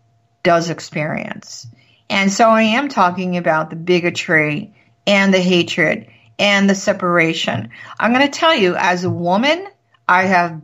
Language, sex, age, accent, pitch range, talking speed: English, female, 50-69, American, 160-210 Hz, 145 wpm